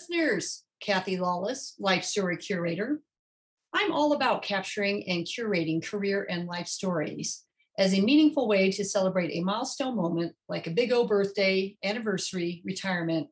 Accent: American